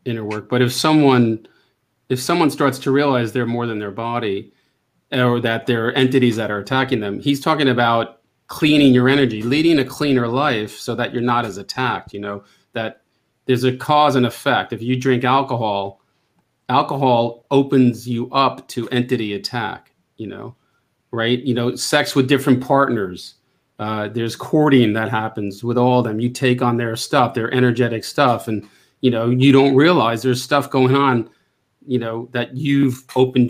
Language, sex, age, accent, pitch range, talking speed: English, male, 40-59, American, 115-135 Hz, 175 wpm